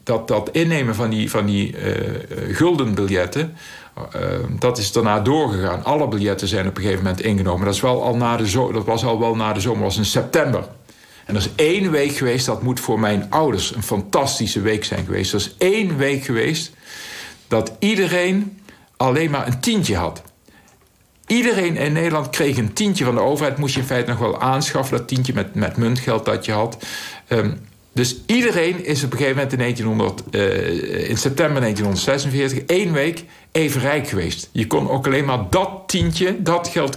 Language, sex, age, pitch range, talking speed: Dutch, male, 60-79, 105-145 Hz, 180 wpm